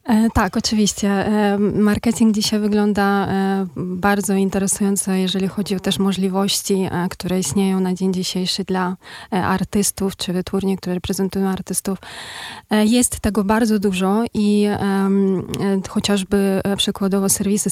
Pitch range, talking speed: 185-210 Hz, 110 wpm